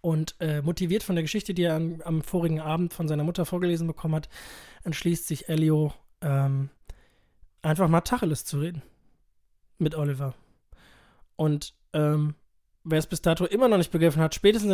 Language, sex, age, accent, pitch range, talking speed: German, male, 20-39, German, 150-175 Hz, 165 wpm